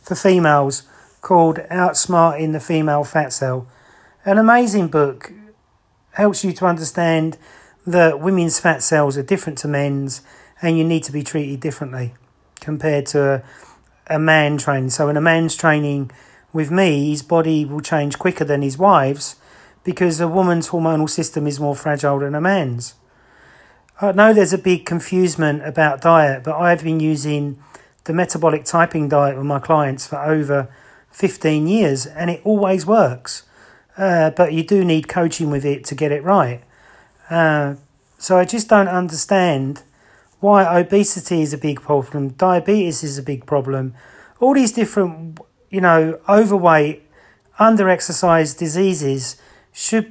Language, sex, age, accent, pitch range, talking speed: English, male, 40-59, British, 145-180 Hz, 155 wpm